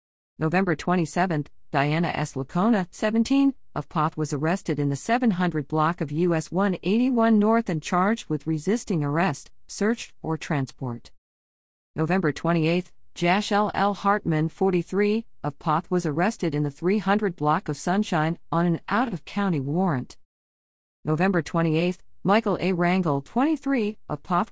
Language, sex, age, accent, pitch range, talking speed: English, female, 50-69, American, 150-200 Hz, 135 wpm